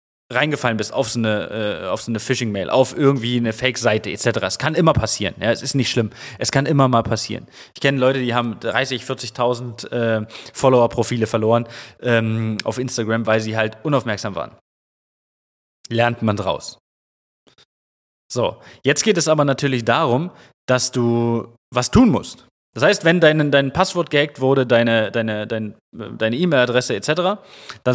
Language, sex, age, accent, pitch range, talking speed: German, male, 20-39, German, 110-135 Hz, 165 wpm